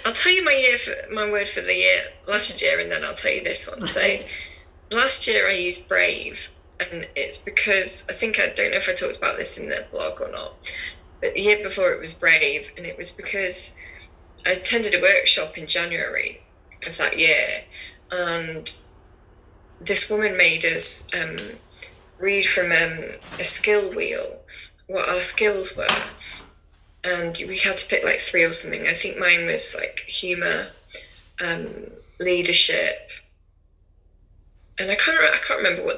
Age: 10-29